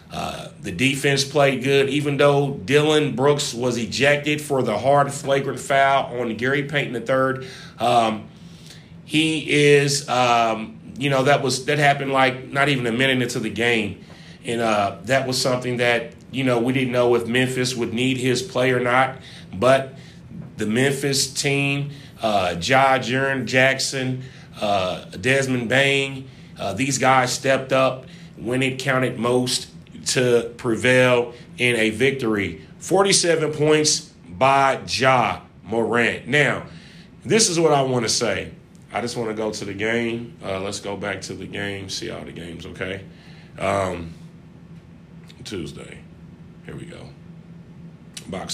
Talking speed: 150 wpm